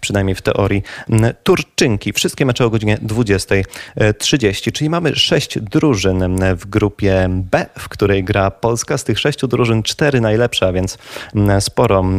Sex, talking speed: male, 145 wpm